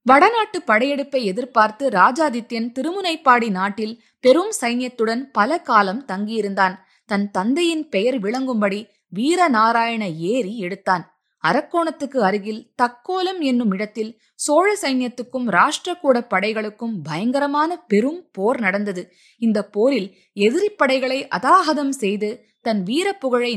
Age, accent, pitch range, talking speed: 20-39, native, 205-270 Hz, 100 wpm